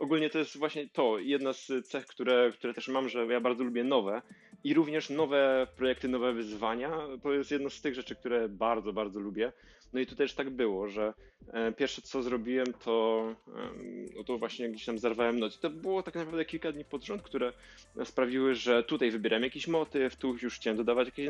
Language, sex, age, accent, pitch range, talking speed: Polish, male, 20-39, native, 115-135 Hz, 195 wpm